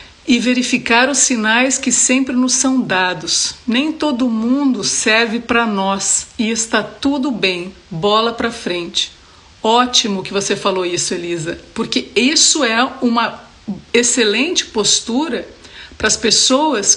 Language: Portuguese